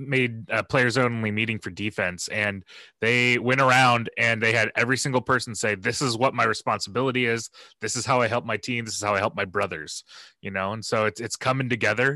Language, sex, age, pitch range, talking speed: English, male, 20-39, 110-135 Hz, 225 wpm